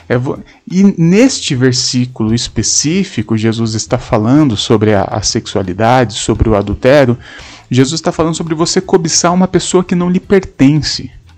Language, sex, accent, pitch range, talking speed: Portuguese, male, Brazilian, 120-155 Hz, 135 wpm